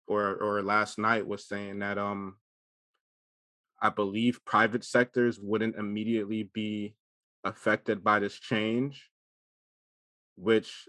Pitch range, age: 105-120 Hz, 20-39